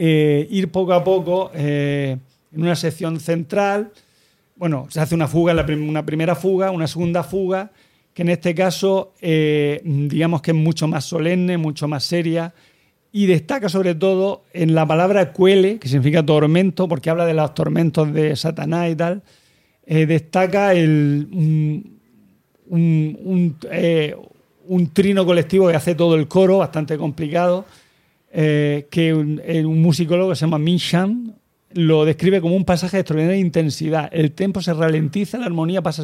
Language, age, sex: Spanish, 40-59, male